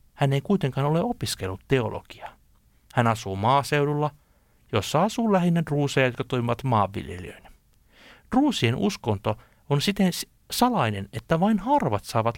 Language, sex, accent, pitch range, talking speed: Finnish, male, native, 110-150 Hz, 120 wpm